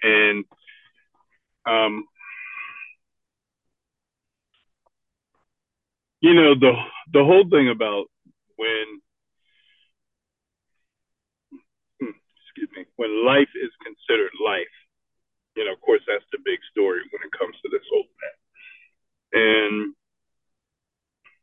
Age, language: 40-59, English